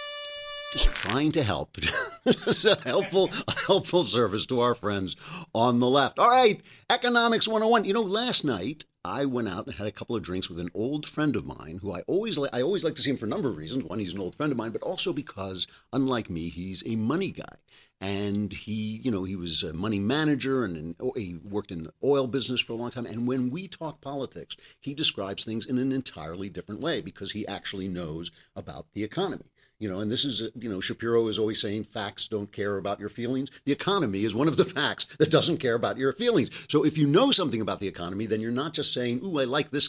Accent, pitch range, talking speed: American, 100-145 Hz, 230 wpm